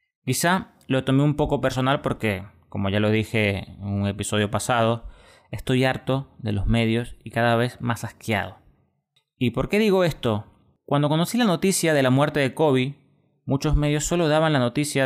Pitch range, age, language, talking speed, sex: 110-140 Hz, 20-39, Spanish, 180 wpm, male